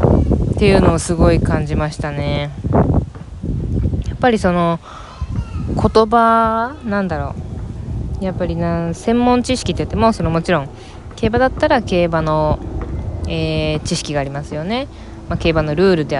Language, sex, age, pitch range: Japanese, female, 20-39, 145-195 Hz